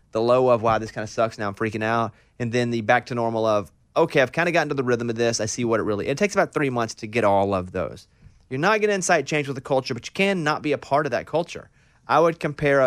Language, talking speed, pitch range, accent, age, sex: English, 310 wpm, 115-160 Hz, American, 30-49, male